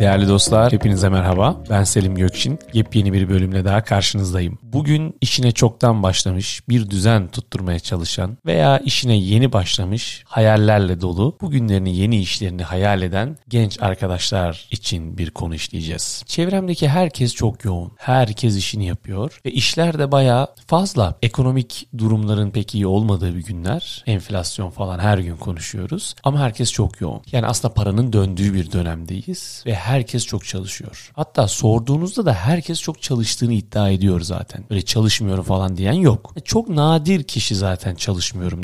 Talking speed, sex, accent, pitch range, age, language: 145 wpm, male, native, 95-125 Hz, 40-59, Turkish